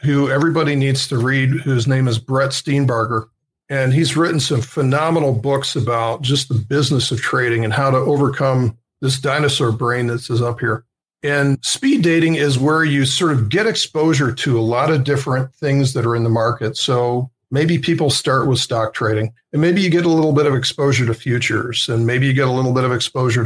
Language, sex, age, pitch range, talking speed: English, male, 50-69, 120-145 Hz, 205 wpm